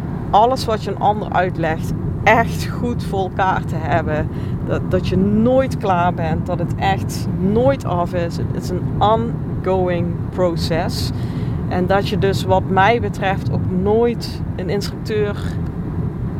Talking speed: 145 wpm